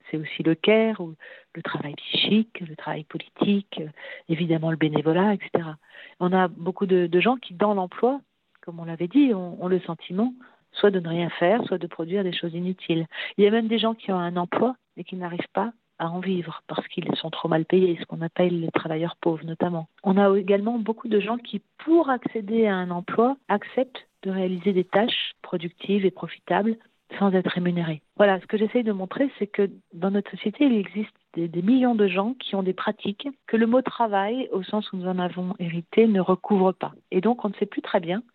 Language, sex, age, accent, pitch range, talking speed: French, female, 50-69, French, 175-215 Hz, 215 wpm